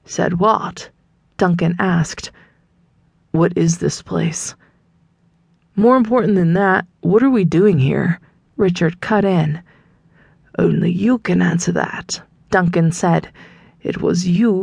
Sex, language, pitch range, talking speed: female, English, 160-195 Hz, 125 wpm